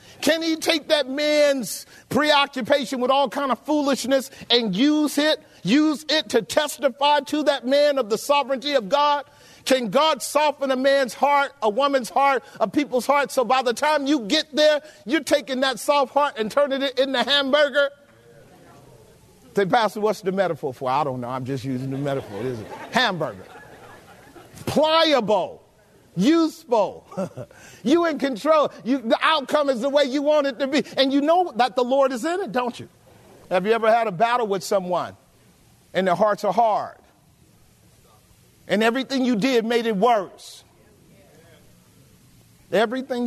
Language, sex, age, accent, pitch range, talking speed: English, male, 40-59, American, 220-290 Hz, 165 wpm